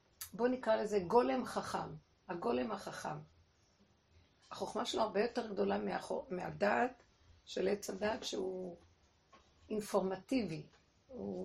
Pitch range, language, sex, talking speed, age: 165-225 Hz, Hebrew, female, 100 wpm, 50-69